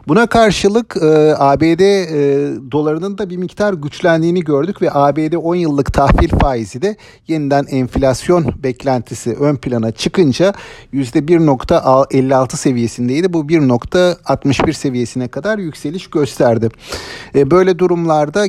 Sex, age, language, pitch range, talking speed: male, 50-69, Turkish, 130-165 Hz, 115 wpm